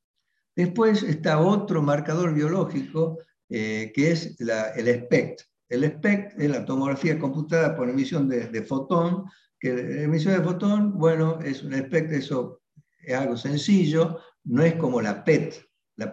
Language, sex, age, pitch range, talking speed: Spanish, male, 60-79, 130-165 Hz, 145 wpm